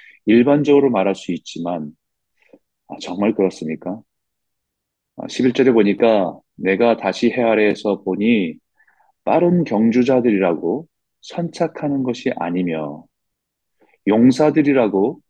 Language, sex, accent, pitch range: Korean, male, native, 100-140 Hz